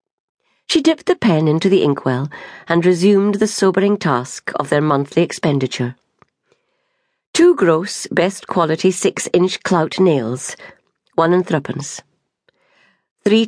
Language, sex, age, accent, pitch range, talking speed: English, female, 50-69, British, 150-205 Hz, 125 wpm